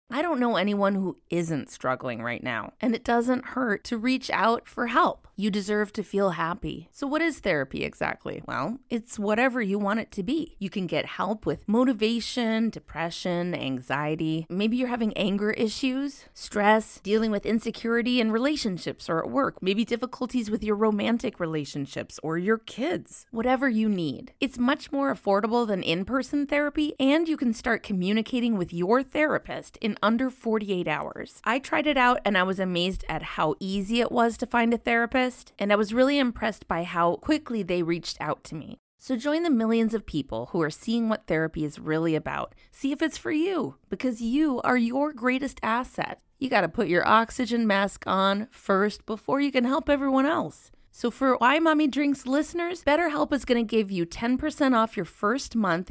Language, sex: English, female